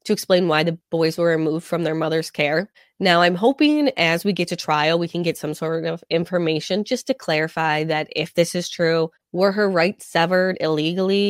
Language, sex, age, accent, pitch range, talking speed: English, female, 20-39, American, 155-190 Hz, 205 wpm